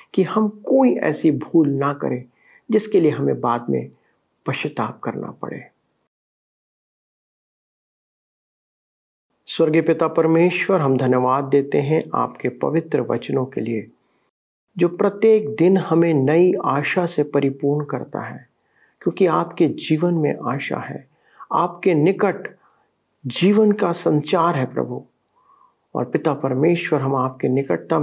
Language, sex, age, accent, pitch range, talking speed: Hindi, male, 50-69, native, 140-190 Hz, 120 wpm